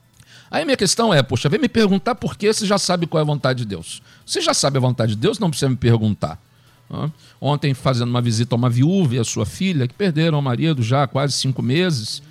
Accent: Brazilian